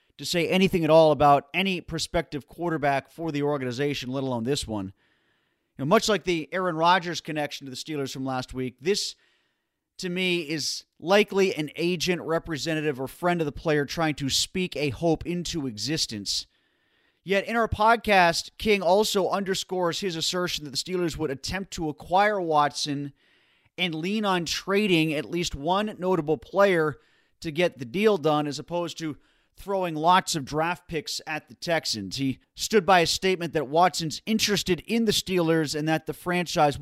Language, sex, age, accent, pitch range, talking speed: English, male, 30-49, American, 145-180 Hz, 170 wpm